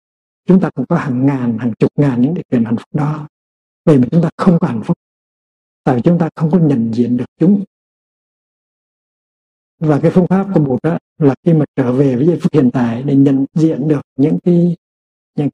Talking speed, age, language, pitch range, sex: 210 wpm, 60-79, Vietnamese, 125-170 Hz, male